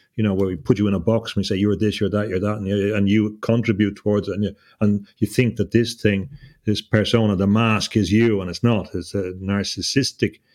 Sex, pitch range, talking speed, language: male, 100-115 Hz, 255 wpm, English